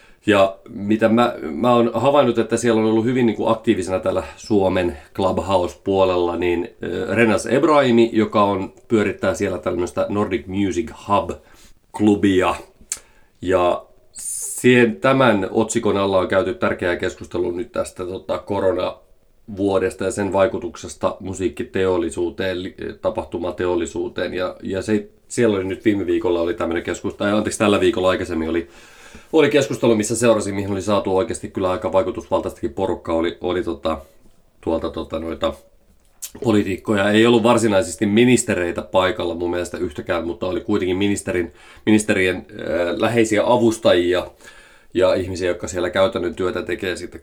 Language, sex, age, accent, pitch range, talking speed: Finnish, male, 30-49, native, 95-115 Hz, 130 wpm